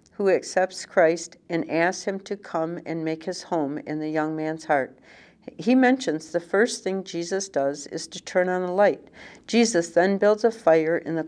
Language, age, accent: English, 60-79, American